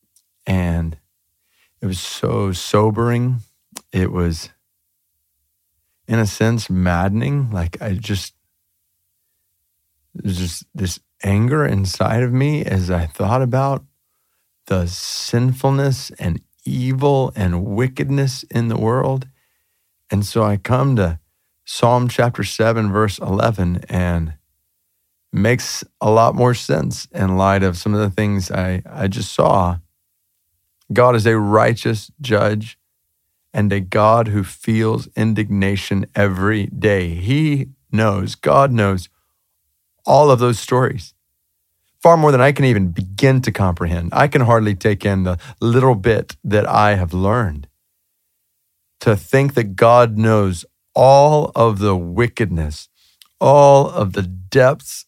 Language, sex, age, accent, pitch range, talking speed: English, male, 40-59, American, 90-120 Hz, 125 wpm